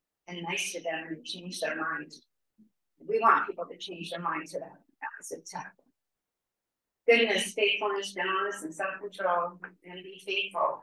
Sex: female